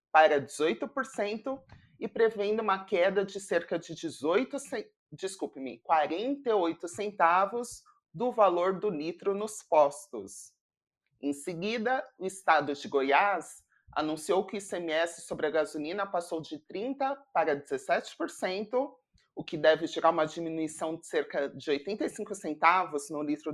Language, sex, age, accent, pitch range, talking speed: Portuguese, male, 30-49, Brazilian, 155-220 Hz, 125 wpm